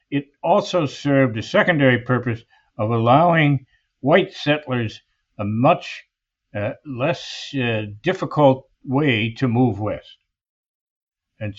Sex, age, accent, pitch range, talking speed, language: male, 60-79, American, 115-140 Hz, 110 wpm, English